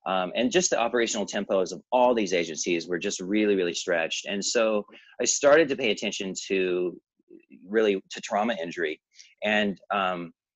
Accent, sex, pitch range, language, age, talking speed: American, male, 95-115 Hz, English, 30-49, 165 wpm